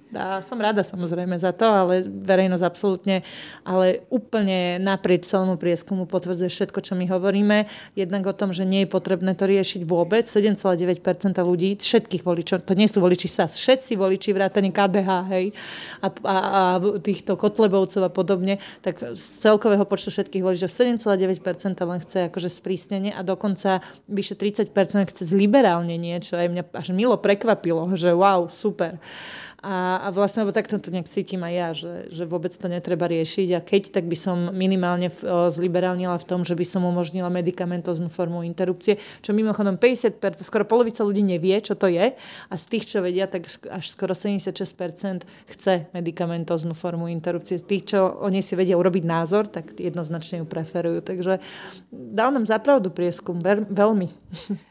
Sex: female